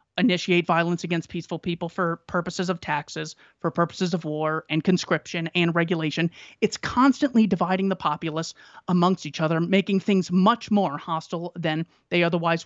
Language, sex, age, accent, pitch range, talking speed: English, male, 30-49, American, 160-185 Hz, 155 wpm